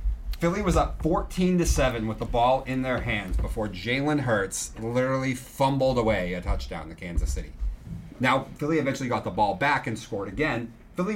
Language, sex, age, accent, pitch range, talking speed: English, male, 30-49, American, 110-150 Hz, 170 wpm